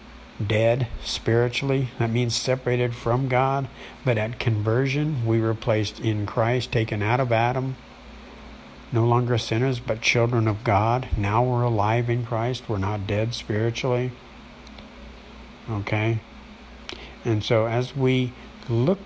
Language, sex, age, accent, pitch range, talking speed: English, male, 60-79, American, 105-125 Hz, 130 wpm